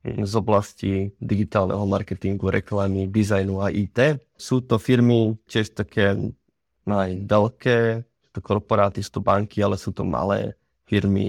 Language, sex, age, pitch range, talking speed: Czech, male, 20-39, 100-115 Hz, 130 wpm